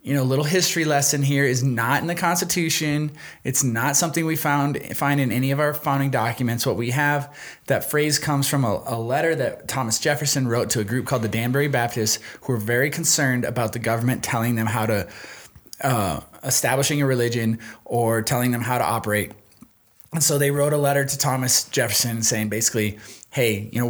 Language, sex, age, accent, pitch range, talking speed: English, male, 20-39, American, 115-145 Hz, 200 wpm